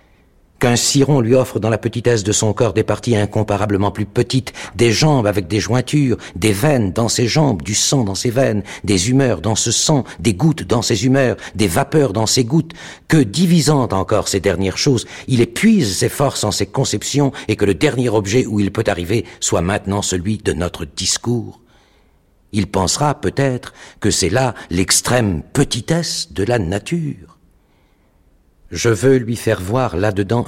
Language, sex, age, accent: French, male, 60-79, French